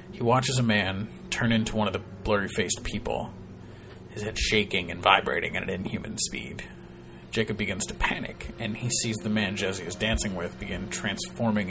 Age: 30-49